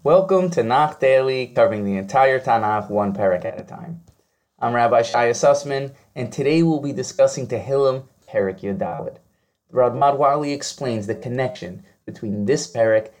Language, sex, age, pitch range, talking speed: English, male, 20-39, 120-155 Hz, 150 wpm